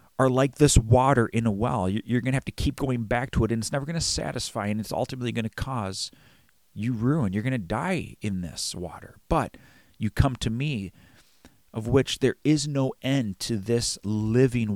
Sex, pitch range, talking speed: male, 110-140 Hz, 210 wpm